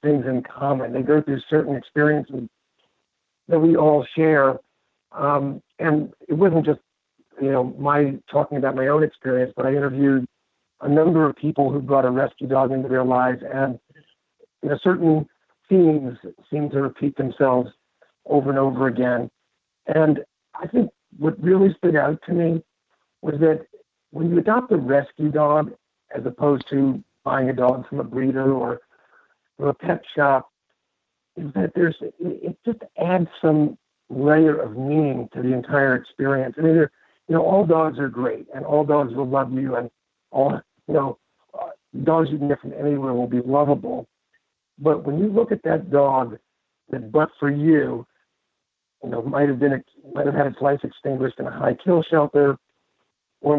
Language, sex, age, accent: English, male, 60-79, American